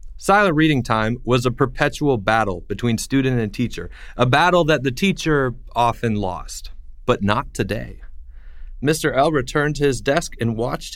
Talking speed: 160 wpm